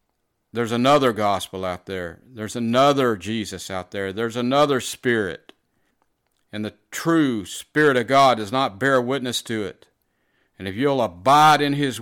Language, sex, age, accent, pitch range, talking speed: English, male, 50-69, American, 100-130 Hz, 155 wpm